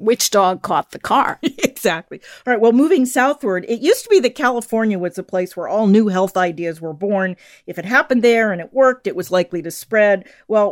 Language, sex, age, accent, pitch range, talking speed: English, female, 50-69, American, 180-230 Hz, 225 wpm